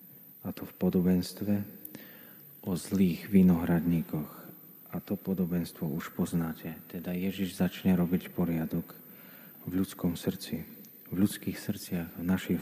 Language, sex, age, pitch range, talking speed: Slovak, male, 40-59, 90-105 Hz, 120 wpm